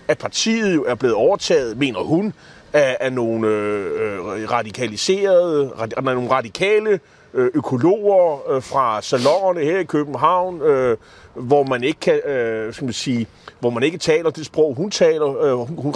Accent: native